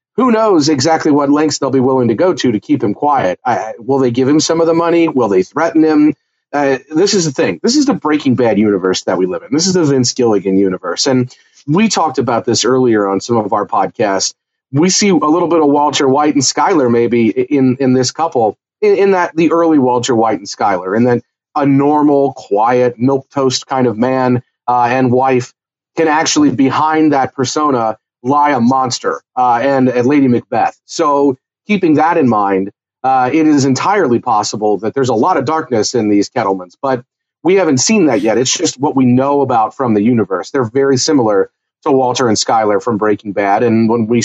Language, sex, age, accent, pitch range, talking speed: English, male, 40-59, American, 125-155 Hz, 210 wpm